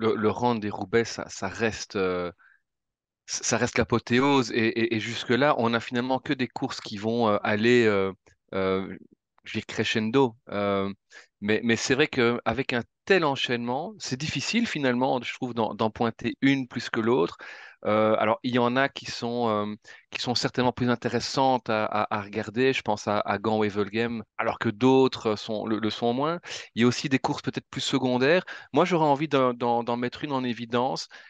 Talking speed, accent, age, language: 195 wpm, French, 30-49, French